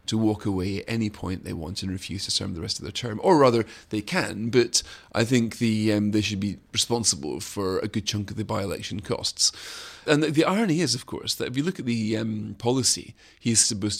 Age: 30-49